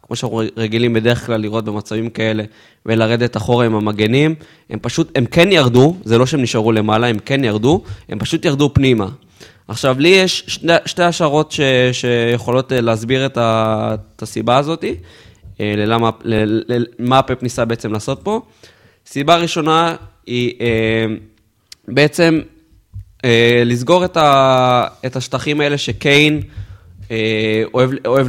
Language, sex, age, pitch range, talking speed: Hebrew, male, 20-39, 110-140 Hz, 130 wpm